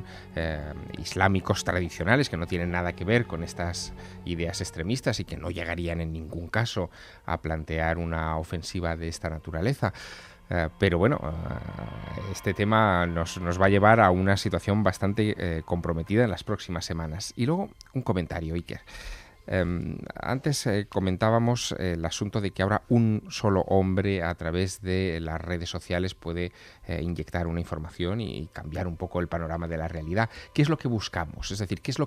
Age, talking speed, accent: 30-49, 180 wpm, Spanish